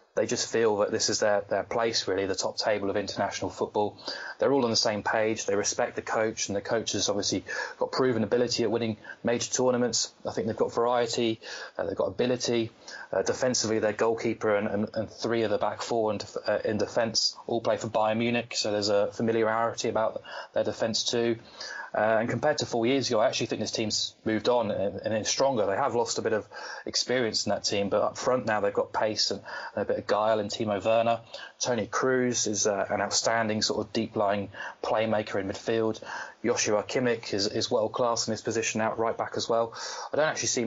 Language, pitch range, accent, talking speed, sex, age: English, 105-120 Hz, British, 220 wpm, male, 20-39